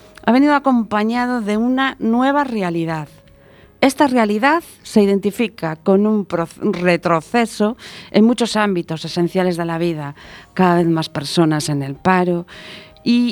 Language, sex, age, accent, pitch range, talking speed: Spanish, female, 40-59, Spanish, 175-225 Hz, 130 wpm